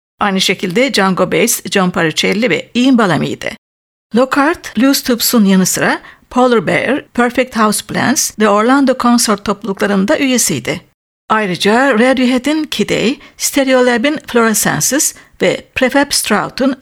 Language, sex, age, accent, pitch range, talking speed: Turkish, female, 60-79, native, 210-260 Hz, 120 wpm